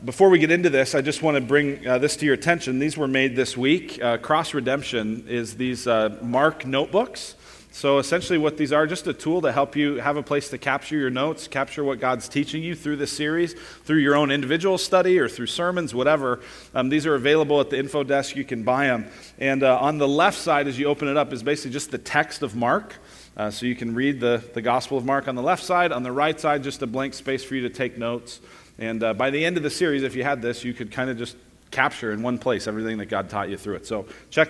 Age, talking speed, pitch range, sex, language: 40-59, 260 wpm, 125-155 Hz, male, English